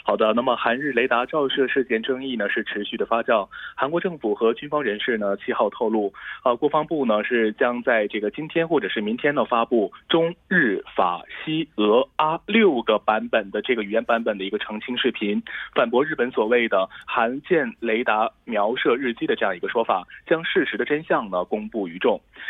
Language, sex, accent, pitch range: Korean, male, Chinese, 110-165 Hz